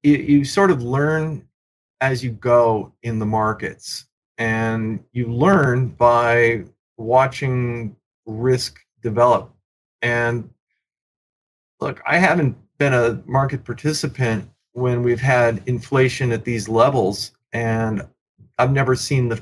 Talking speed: 115 wpm